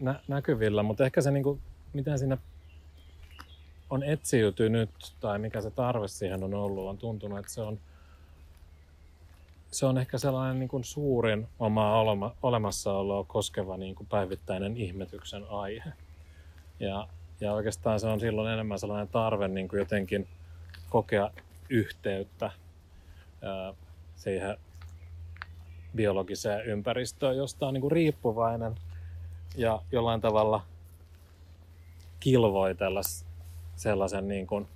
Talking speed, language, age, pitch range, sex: 105 wpm, Finnish, 30-49, 85-110 Hz, male